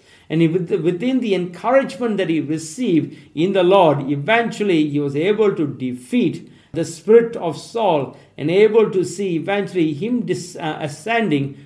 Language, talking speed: English, 140 wpm